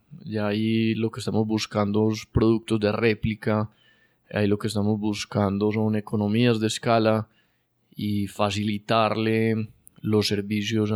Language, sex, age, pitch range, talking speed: Spanish, male, 20-39, 105-115 Hz, 130 wpm